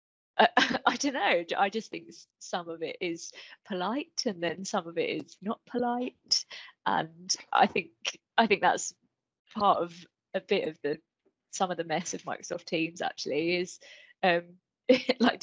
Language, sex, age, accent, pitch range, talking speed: English, female, 20-39, British, 170-220 Hz, 165 wpm